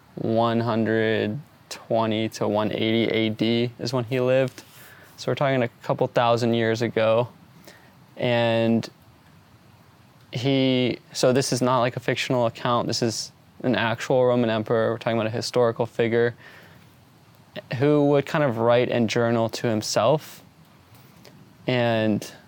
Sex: male